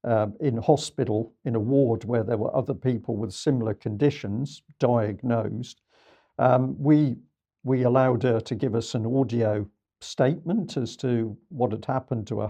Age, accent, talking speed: 50-69, British, 160 wpm